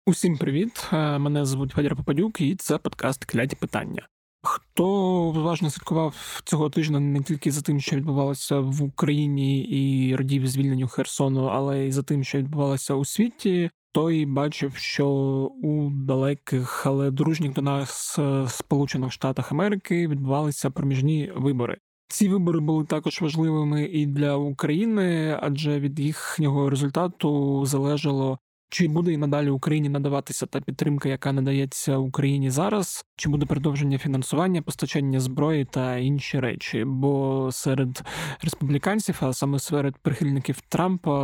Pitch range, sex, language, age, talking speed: 135-160 Hz, male, Ukrainian, 20-39, 135 wpm